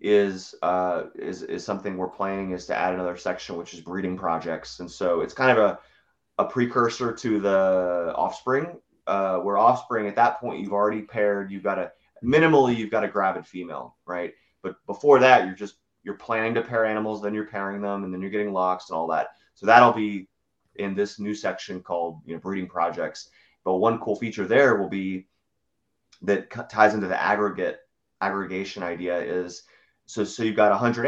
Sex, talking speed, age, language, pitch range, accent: male, 195 wpm, 30-49, English, 95-110 Hz, American